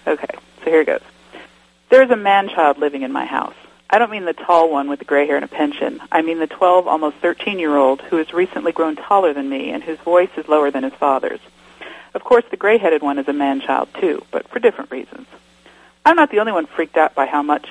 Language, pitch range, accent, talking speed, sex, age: English, 145-230 Hz, American, 235 wpm, female, 50-69